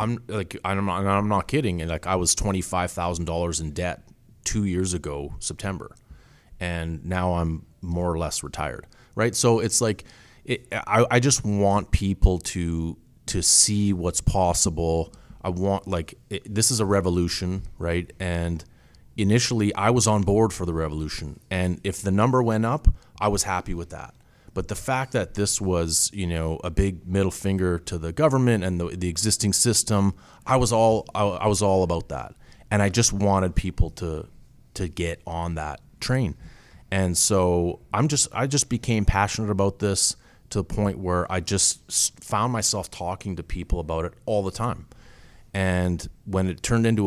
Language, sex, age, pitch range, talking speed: English, male, 30-49, 85-105 Hz, 175 wpm